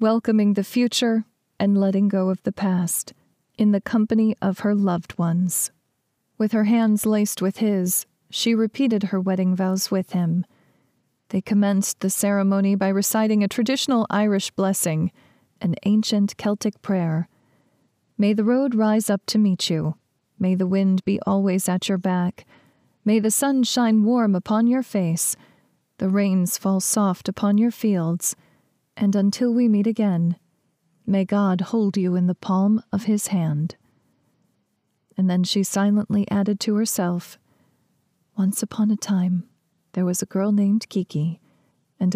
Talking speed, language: 150 wpm, English